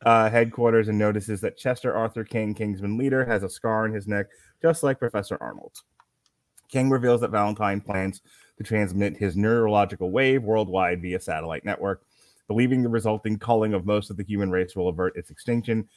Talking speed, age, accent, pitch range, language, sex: 180 wpm, 30-49, American, 95-120 Hz, English, male